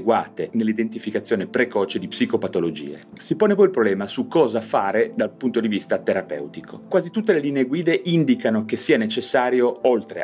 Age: 30-49